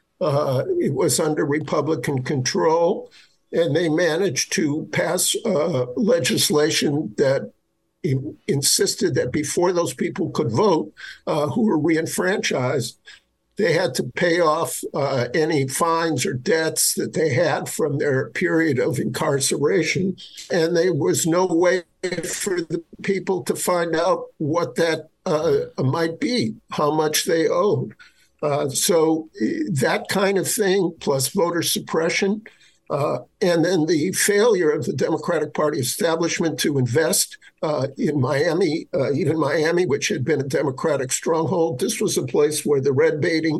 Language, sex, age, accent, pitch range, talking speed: English, male, 50-69, American, 155-200 Hz, 145 wpm